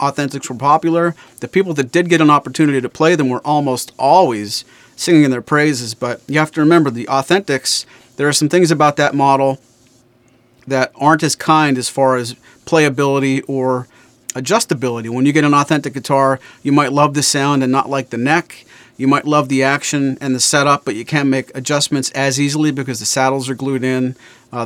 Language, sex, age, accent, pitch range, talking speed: English, male, 40-59, American, 125-150 Hz, 200 wpm